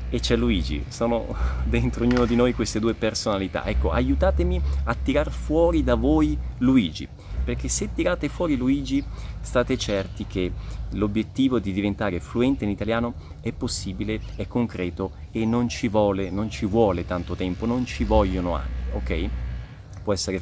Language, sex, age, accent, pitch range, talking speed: Italian, male, 30-49, native, 90-110 Hz, 155 wpm